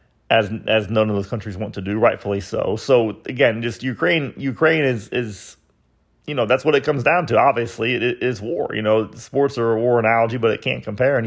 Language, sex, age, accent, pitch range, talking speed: English, male, 30-49, American, 110-125 Hz, 230 wpm